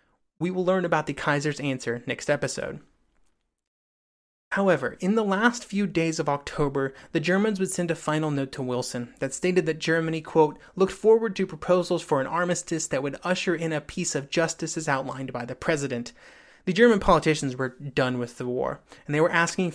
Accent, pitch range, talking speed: American, 140-185 Hz, 190 wpm